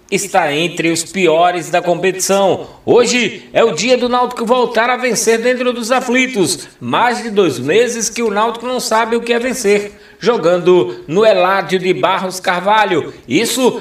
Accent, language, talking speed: Brazilian, Portuguese, 165 wpm